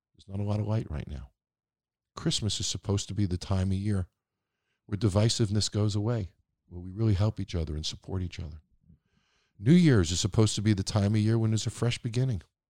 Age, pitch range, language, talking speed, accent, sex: 50-69, 80-110 Hz, English, 215 wpm, American, male